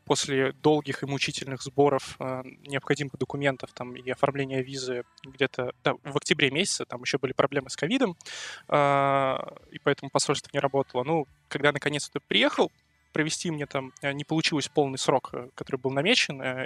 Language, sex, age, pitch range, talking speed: Russian, male, 20-39, 130-150 Hz, 140 wpm